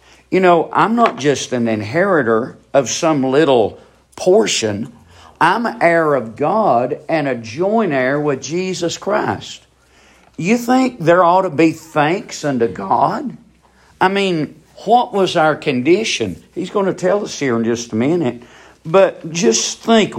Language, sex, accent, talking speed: English, male, American, 150 wpm